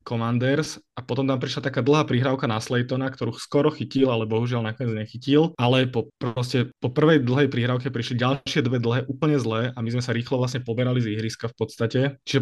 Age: 20-39